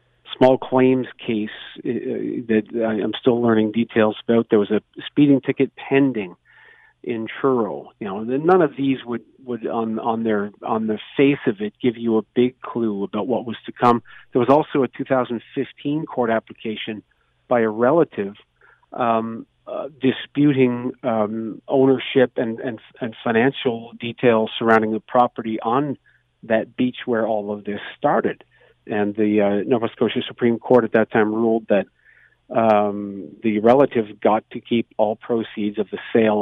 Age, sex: 50-69, male